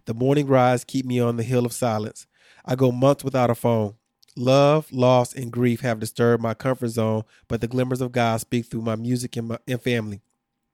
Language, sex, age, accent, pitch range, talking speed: English, male, 30-49, American, 120-135 Hz, 210 wpm